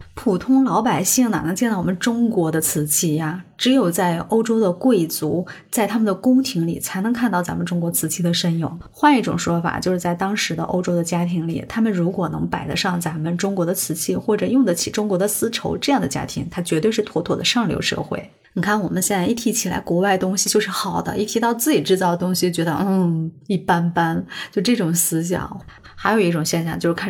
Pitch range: 175-215 Hz